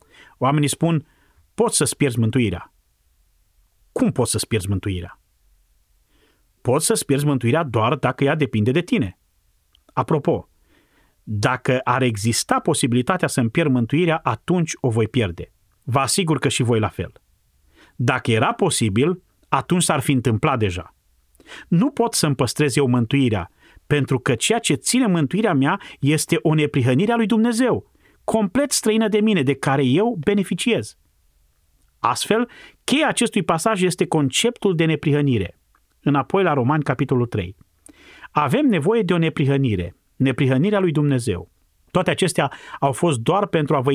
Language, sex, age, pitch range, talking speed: Romanian, male, 30-49, 115-170 Hz, 140 wpm